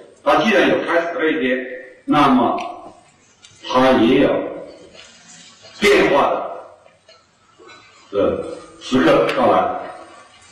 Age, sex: 50-69, male